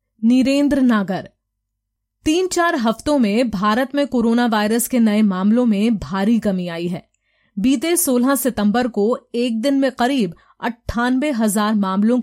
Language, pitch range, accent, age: Hindi, 200-245 Hz, native, 30-49